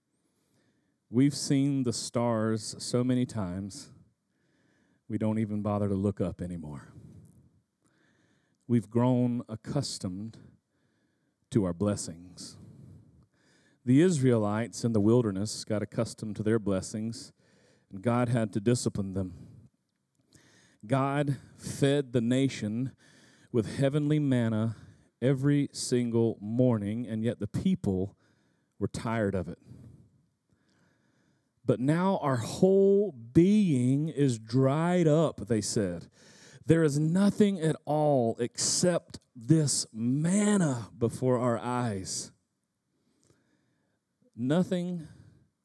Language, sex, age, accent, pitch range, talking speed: English, male, 40-59, American, 105-135 Hz, 100 wpm